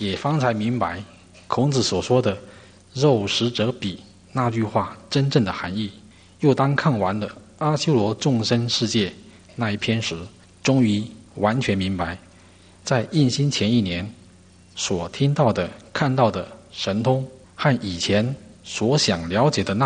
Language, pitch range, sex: English, 95-125 Hz, male